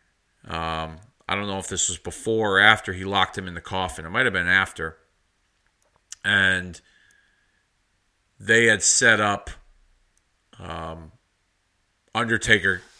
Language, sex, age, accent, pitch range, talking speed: English, male, 40-59, American, 90-115 Hz, 130 wpm